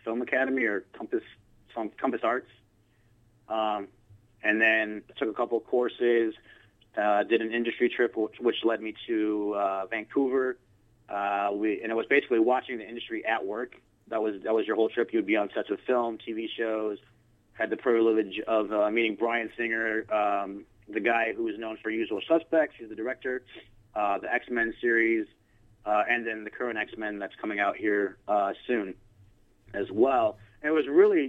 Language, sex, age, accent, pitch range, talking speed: English, male, 30-49, American, 105-120 Hz, 180 wpm